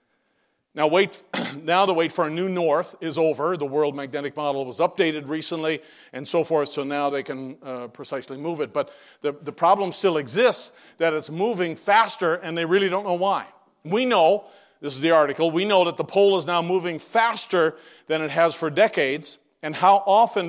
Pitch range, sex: 155-195 Hz, male